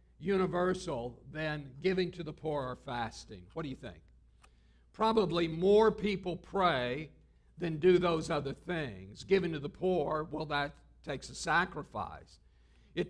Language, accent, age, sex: English, American, 60-79, male